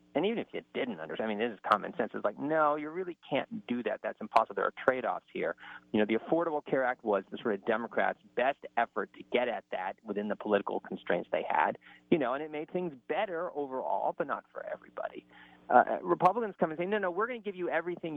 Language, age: English, 40-59